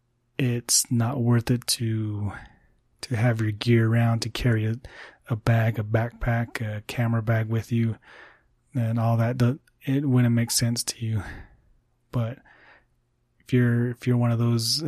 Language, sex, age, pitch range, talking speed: English, male, 30-49, 115-120 Hz, 155 wpm